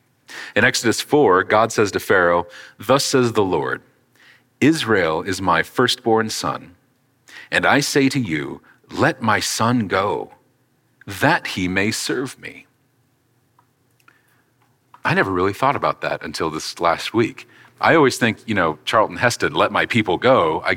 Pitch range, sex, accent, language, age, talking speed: 110-125 Hz, male, American, English, 40-59, 150 wpm